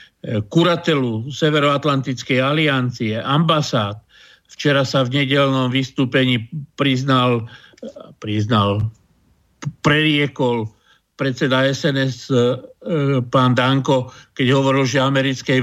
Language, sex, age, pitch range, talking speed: Slovak, male, 50-69, 125-135 Hz, 75 wpm